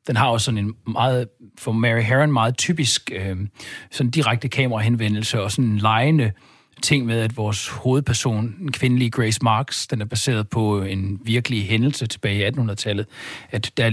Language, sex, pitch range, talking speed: Danish, male, 110-135 Hz, 170 wpm